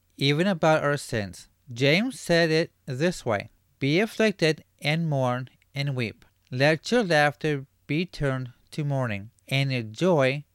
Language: English